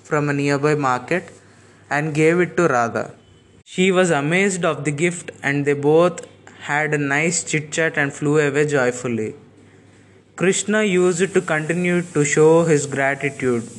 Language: Telugu